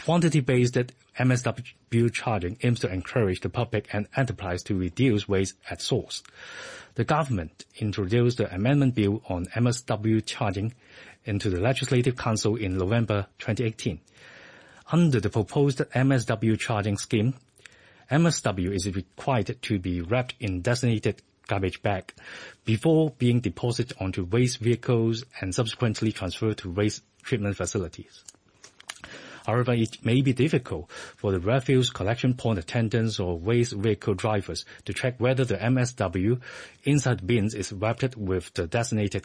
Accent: Chinese